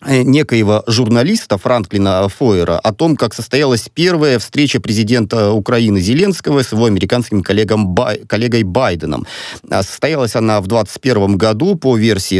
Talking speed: 125 wpm